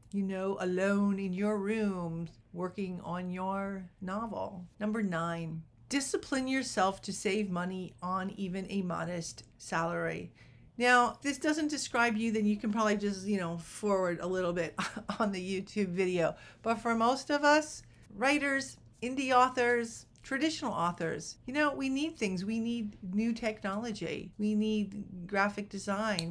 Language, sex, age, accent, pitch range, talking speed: English, female, 50-69, American, 180-235 Hz, 150 wpm